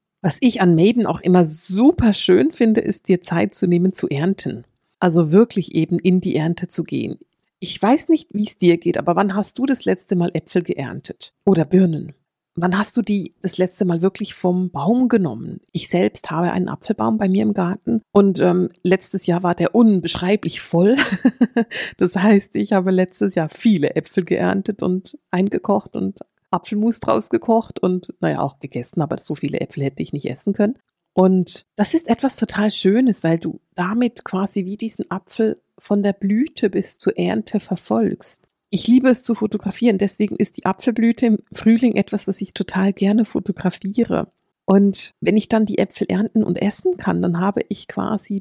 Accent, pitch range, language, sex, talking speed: German, 180-220 Hz, German, female, 185 wpm